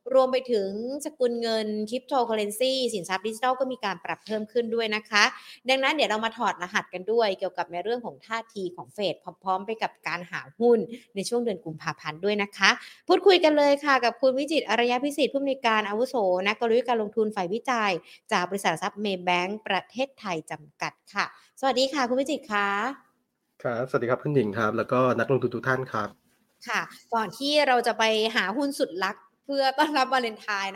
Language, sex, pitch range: Thai, female, 185-250 Hz